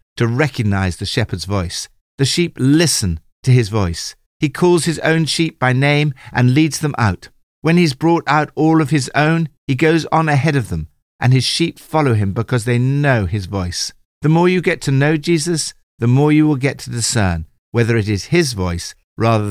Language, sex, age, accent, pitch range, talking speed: English, male, 50-69, British, 90-130 Hz, 205 wpm